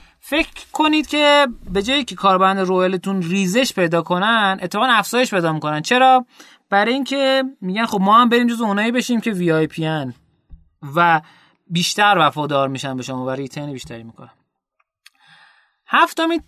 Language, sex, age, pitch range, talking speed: Persian, male, 30-49, 170-260 Hz, 145 wpm